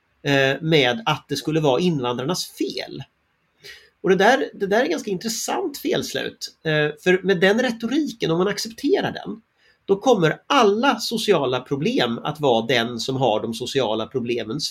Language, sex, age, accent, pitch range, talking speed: English, male, 30-49, Swedish, 135-210 Hz, 150 wpm